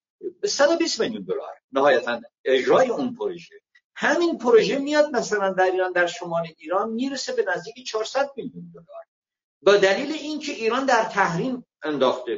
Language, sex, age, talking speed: Persian, male, 50-69, 140 wpm